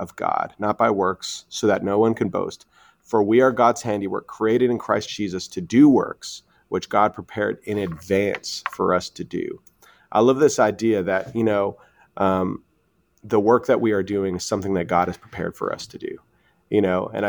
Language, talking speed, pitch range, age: English, 205 wpm, 95-115 Hz, 30-49